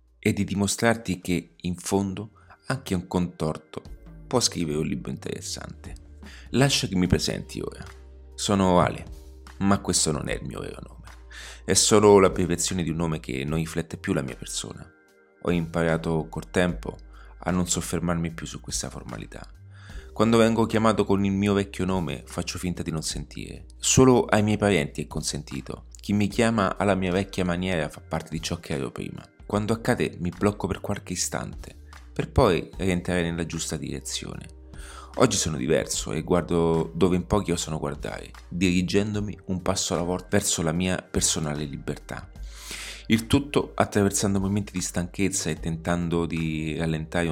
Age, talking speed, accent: 30-49, 165 wpm, native